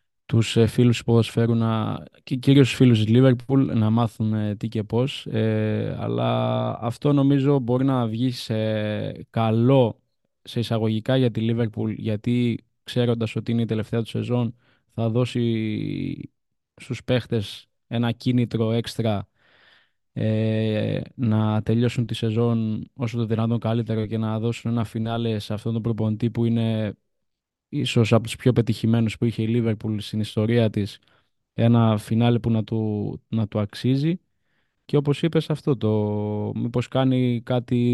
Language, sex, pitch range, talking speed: Greek, male, 110-125 Hz, 140 wpm